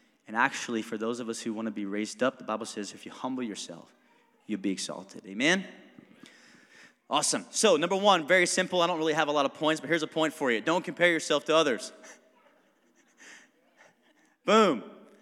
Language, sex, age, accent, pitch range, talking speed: English, male, 30-49, American, 160-225 Hz, 195 wpm